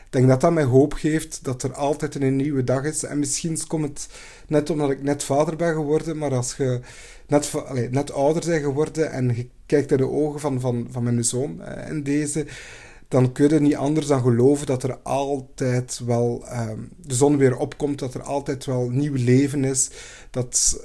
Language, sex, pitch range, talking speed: English, male, 130-155 Hz, 200 wpm